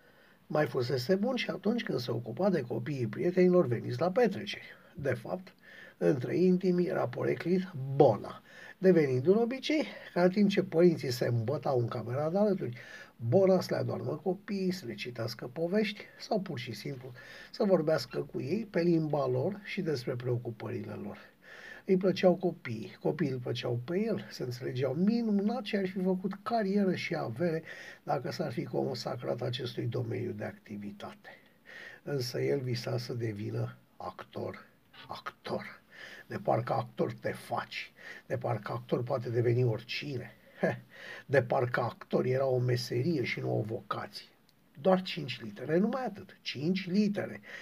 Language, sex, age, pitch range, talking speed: Romanian, male, 60-79, 125-190 Hz, 150 wpm